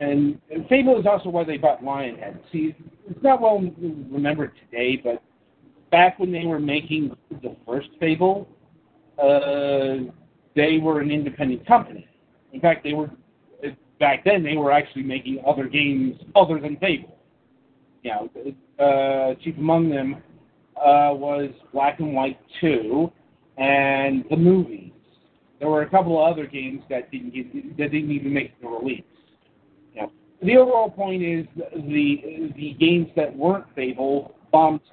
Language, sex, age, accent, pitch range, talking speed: English, male, 50-69, American, 140-165 Hz, 150 wpm